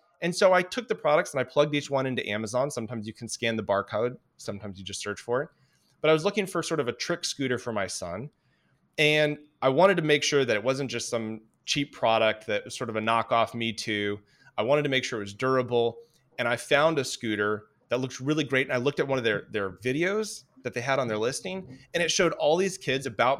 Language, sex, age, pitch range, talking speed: English, male, 30-49, 110-145 Hz, 250 wpm